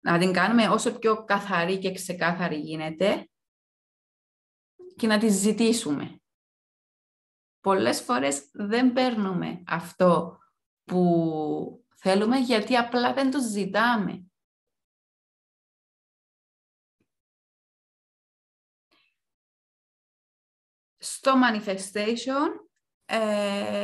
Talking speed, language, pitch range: 70 wpm, Greek, 165-230 Hz